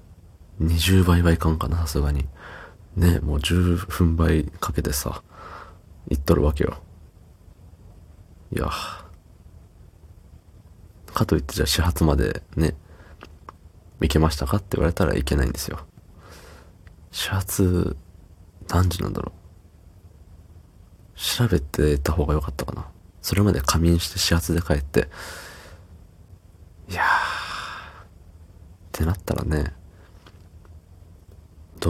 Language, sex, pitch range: Japanese, male, 80-90 Hz